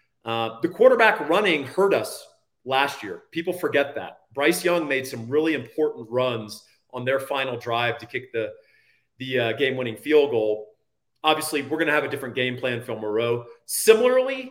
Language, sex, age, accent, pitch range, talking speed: English, male, 40-59, American, 120-155 Hz, 180 wpm